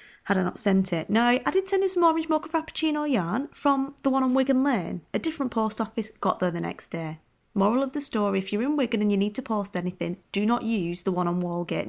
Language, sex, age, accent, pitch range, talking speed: English, female, 30-49, British, 180-250 Hz, 260 wpm